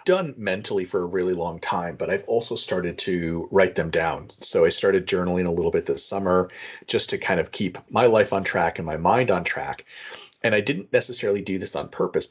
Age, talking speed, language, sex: 40-59, 225 wpm, English, male